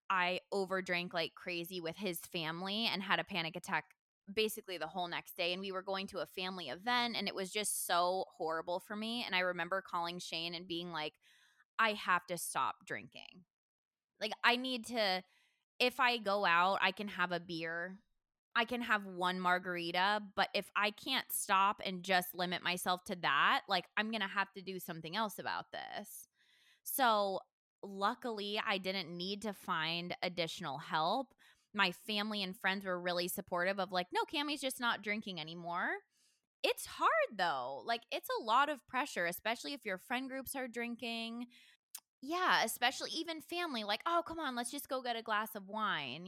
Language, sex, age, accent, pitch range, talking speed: English, female, 20-39, American, 180-240 Hz, 185 wpm